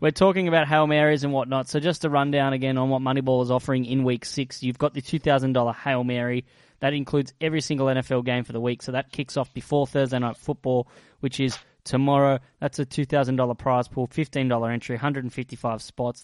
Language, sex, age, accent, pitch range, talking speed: English, male, 10-29, Australian, 120-140 Hz, 200 wpm